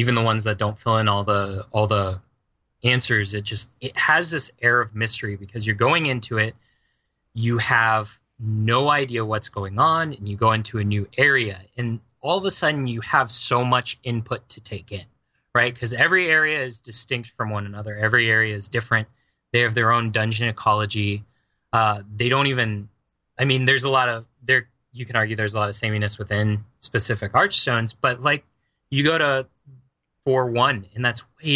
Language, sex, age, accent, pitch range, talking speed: English, male, 20-39, American, 110-130 Hz, 190 wpm